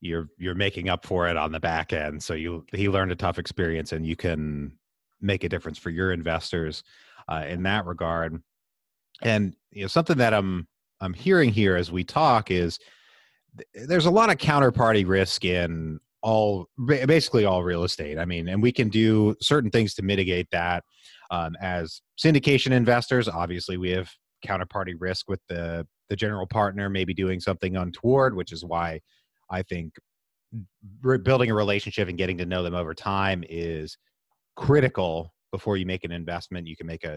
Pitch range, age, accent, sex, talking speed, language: 85-105 Hz, 30-49, American, male, 180 wpm, English